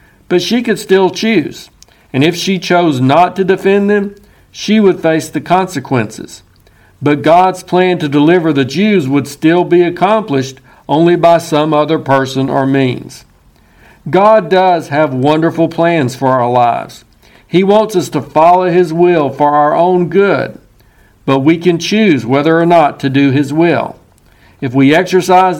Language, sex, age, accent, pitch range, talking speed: English, male, 60-79, American, 135-185 Hz, 160 wpm